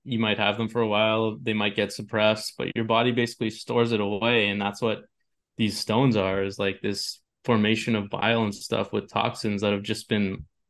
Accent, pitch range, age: American, 100-115 Hz, 20-39